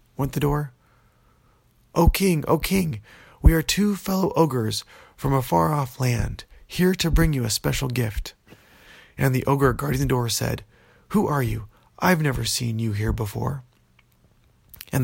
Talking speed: 165 wpm